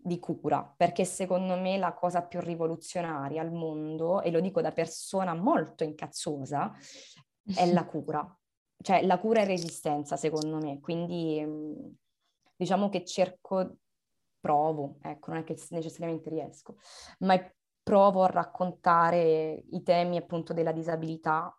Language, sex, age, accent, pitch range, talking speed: Italian, female, 20-39, native, 155-180 Hz, 135 wpm